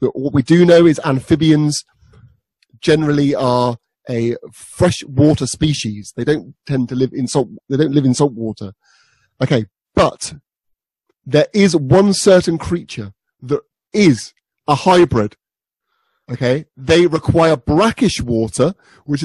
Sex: male